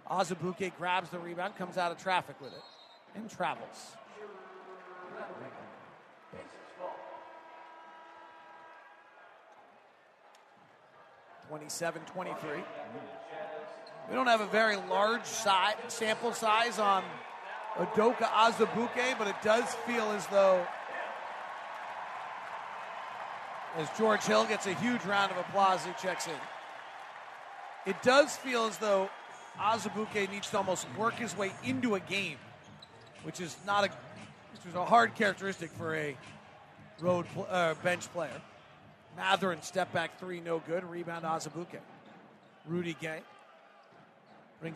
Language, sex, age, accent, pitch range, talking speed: English, male, 40-59, American, 170-210 Hz, 115 wpm